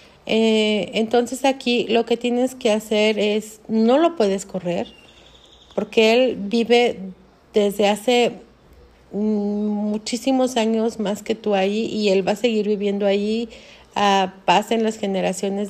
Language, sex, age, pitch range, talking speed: Spanish, female, 40-59, 205-260 Hz, 130 wpm